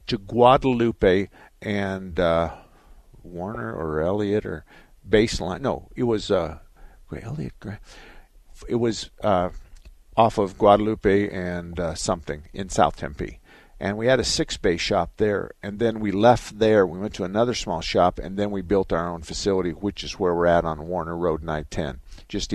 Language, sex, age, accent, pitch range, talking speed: English, male, 50-69, American, 90-110 Hz, 155 wpm